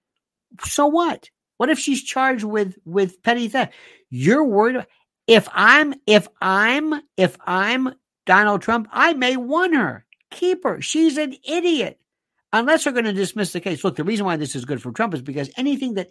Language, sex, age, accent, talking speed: English, male, 60-79, American, 190 wpm